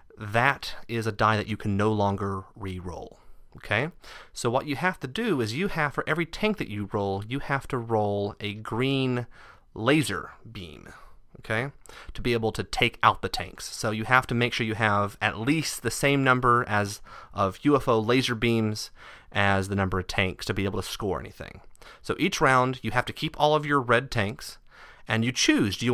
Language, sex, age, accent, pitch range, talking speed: English, male, 30-49, American, 105-140 Hz, 205 wpm